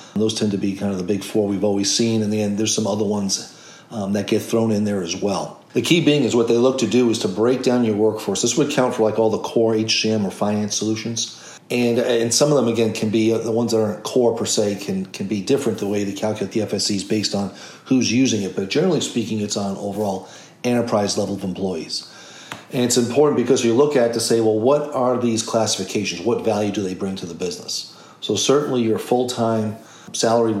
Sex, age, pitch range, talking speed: male, 40-59, 105-120 Hz, 235 wpm